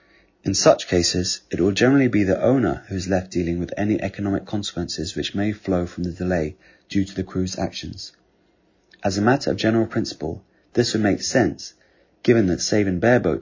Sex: male